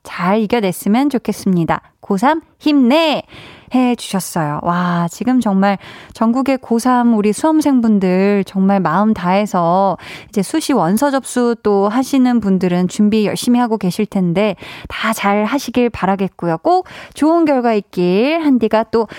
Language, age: Korean, 20-39